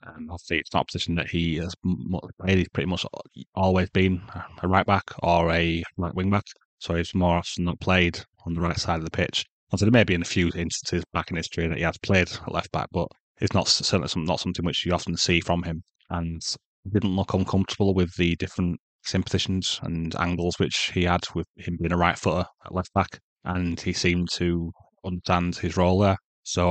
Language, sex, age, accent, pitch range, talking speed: English, male, 20-39, British, 85-95 Hz, 220 wpm